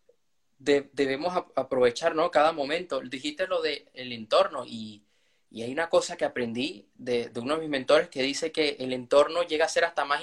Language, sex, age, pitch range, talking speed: Spanish, male, 20-39, 135-195 Hz, 195 wpm